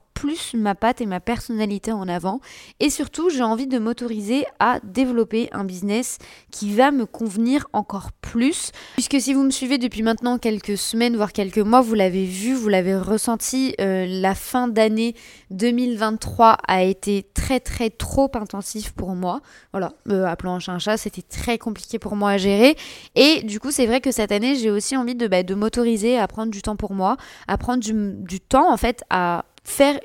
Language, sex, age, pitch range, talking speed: French, female, 20-39, 205-245 Hz, 195 wpm